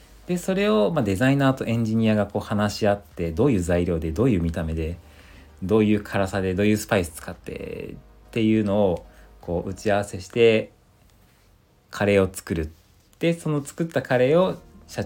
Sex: male